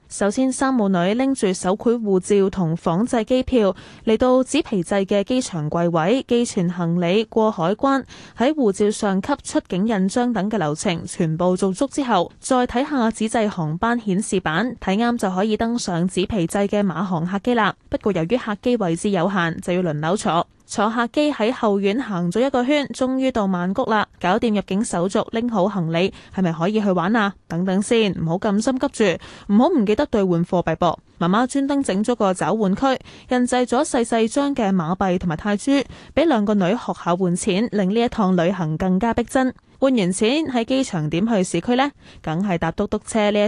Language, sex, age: Chinese, female, 10-29